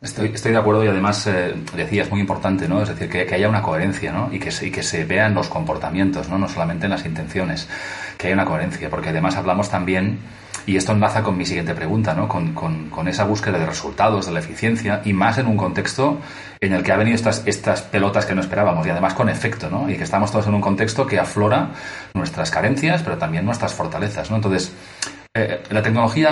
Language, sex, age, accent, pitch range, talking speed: Spanish, male, 30-49, Spanish, 95-110 Hz, 225 wpm